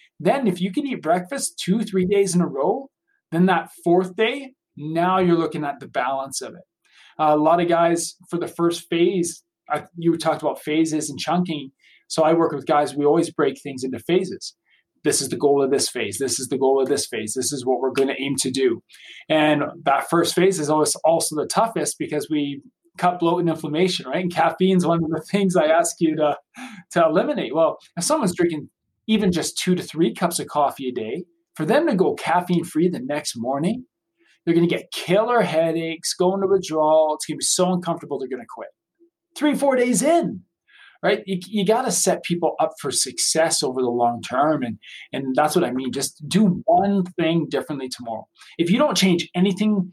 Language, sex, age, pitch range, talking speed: English, male, 20-39, 155-190 Hz, 215 wpm